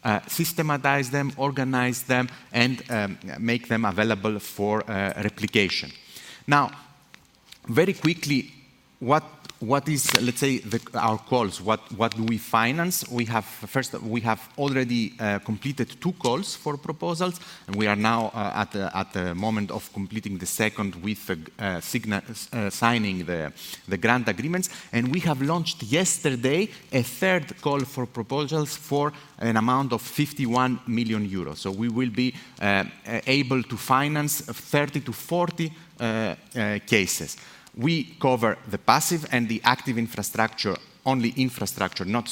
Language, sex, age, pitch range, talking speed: English, male, 30-49, 110-145 Hz, 150 wpm